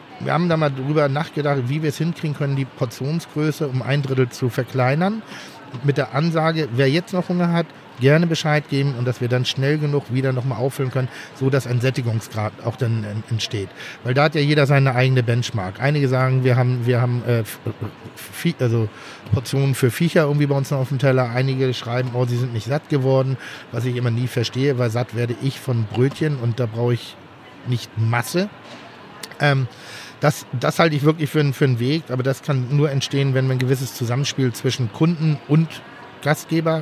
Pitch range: 125-145 Hz